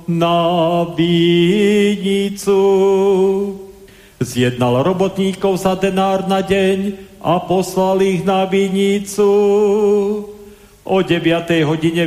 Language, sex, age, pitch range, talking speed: Slovak, male, 40-59, 170-195 Hz, 80 wpm